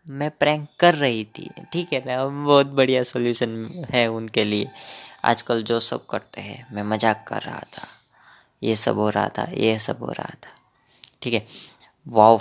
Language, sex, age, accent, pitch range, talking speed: Hindi, female, 20-39, native, 105-125 Hz, 180 wpm